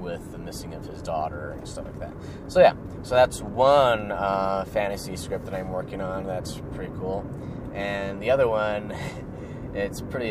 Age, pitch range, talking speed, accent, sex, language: 20-39, 95-115 Hz, 180 wpm, American, male, English